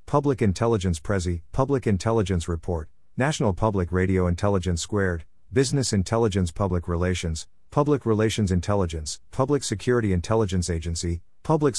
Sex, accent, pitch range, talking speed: male, American, 90-115 Hz, 115 wpm